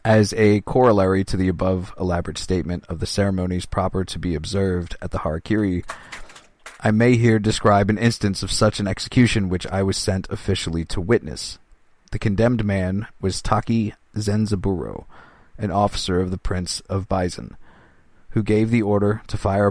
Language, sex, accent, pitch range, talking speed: English, male, American, 90-105 Hz, 165 wpm